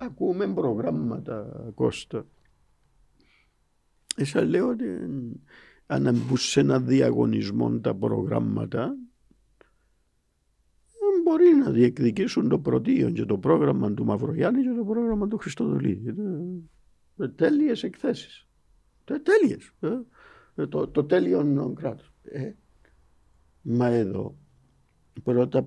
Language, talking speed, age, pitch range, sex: Greek, 90 wpm, 50-69, 85-140 Hz, male